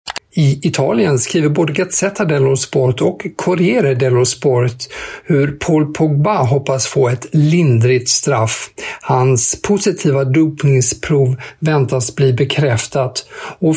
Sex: male